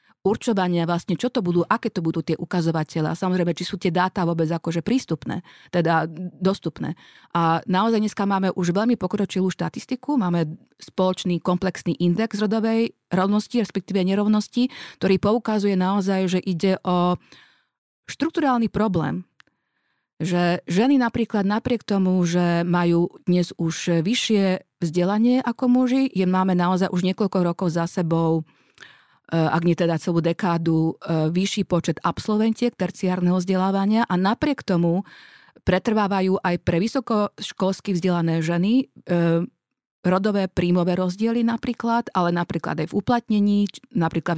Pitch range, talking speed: 170-215 Hz, 130 wpm